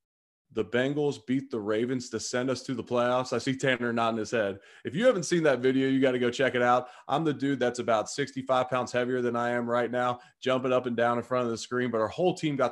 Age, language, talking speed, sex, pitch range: 20-39, English, 270 wpm, male, 110-130 Hz